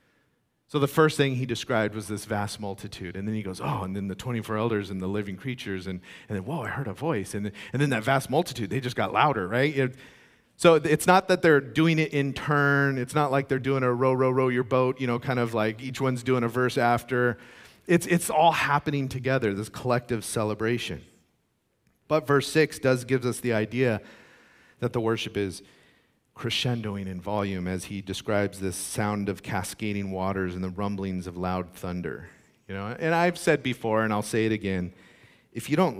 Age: 40-59